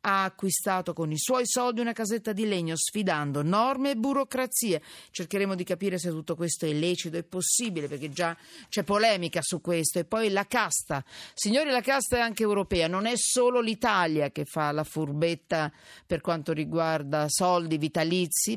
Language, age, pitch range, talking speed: Italian, 40-59, 165-230 Hz, 170 wpm